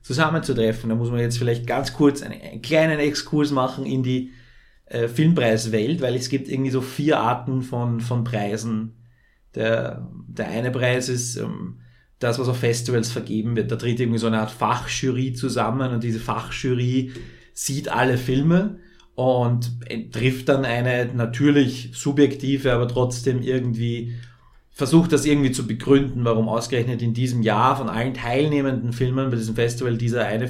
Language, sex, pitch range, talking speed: German, male, 115-135 Hz, 160 wpm